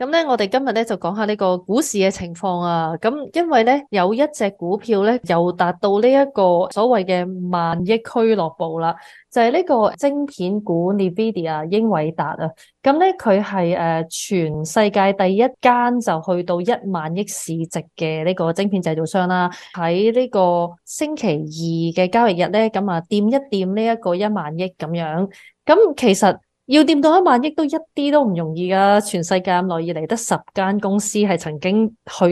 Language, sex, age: Chinese, female, 20-39